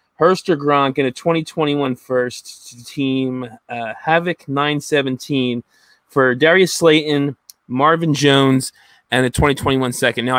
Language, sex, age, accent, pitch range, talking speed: English, male, 20-39, American, 125-145 Hz, 120 wpm